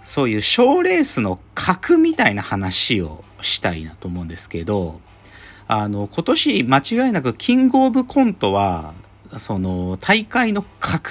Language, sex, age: Japanese, male, 40-59